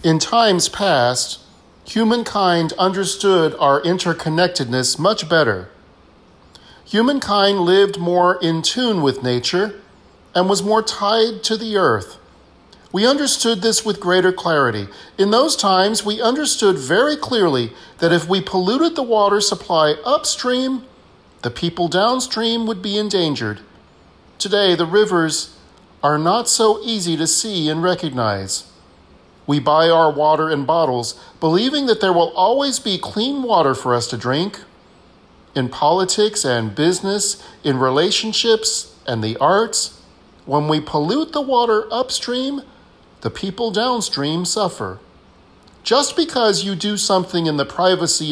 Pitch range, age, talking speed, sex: 135-210 Hz, 40-59, 130 wpm, male